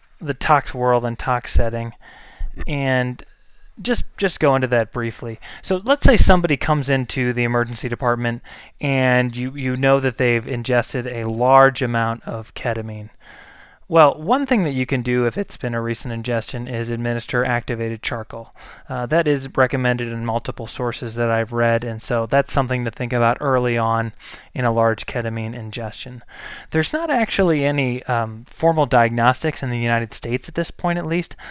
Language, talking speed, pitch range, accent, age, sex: English, 175 wpm, 115-135 Hz, American, 20-39, male